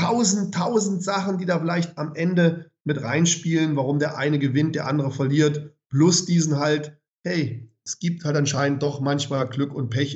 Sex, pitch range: male, 120-150 Hz